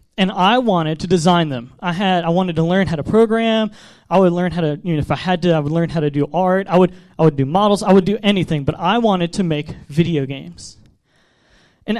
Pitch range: 155-210 Hz